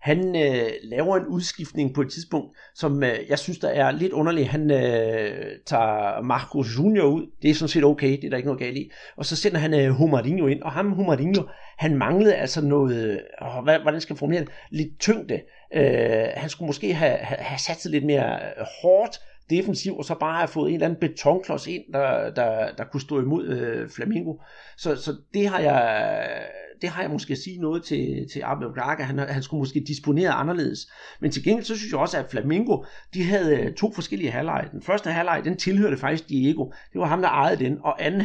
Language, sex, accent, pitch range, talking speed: Danish, male, native, 140-185 Hz, 215 wpm